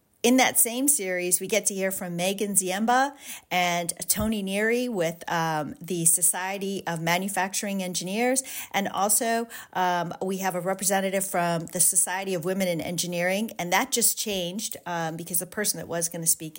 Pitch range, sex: 175-215 Hz, female